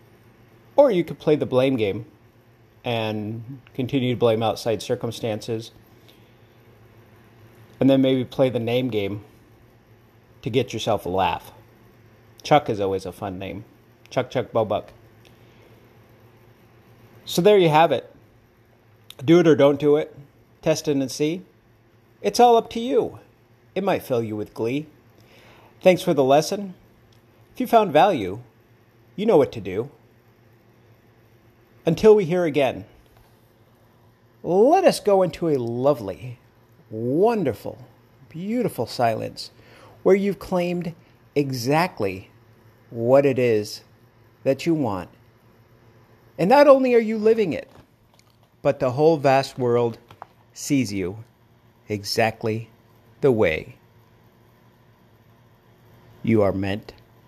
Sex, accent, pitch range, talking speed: male, American, 115-140 Hz, 120 wpm